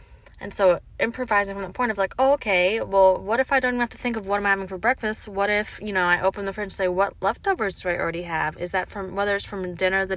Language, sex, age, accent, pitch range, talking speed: English, female, 20-39, American, 175-210 Hz, 290 wpm